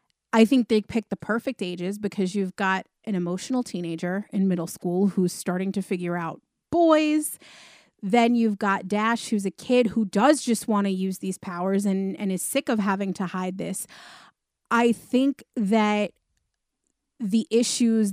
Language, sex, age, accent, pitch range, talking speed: English, female, 30-49, American, 195-230 Hz, 170 wpm